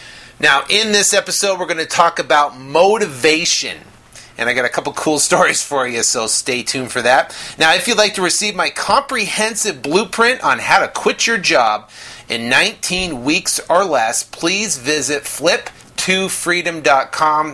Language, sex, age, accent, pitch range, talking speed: English, male, 30-49, American, 130-185 Hz, 165 wpm